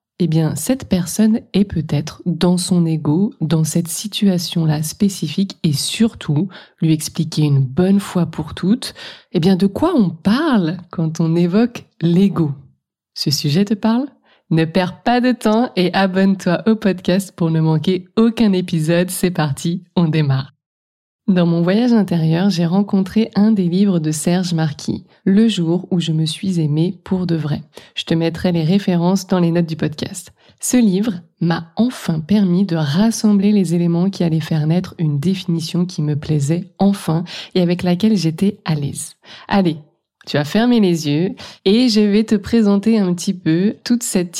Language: French